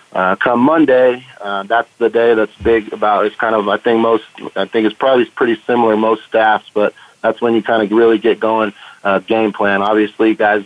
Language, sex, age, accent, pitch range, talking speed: English, male, 30-49, American, 95-110 Hz, 215 wpm